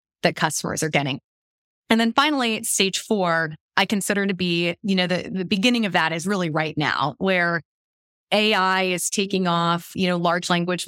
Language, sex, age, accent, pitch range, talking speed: English, female, 20-39, American, 170-200 Hz, 180 wpm